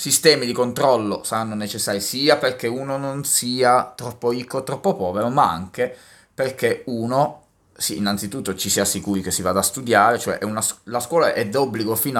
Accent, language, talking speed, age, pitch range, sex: native, Italian, 160 wpm, 20-39, 100-135 Hz, male